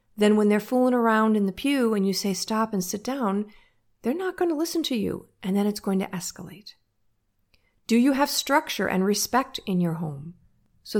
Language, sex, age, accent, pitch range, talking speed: English, female, 50-69, American, 180-225 Hz, 205 wpm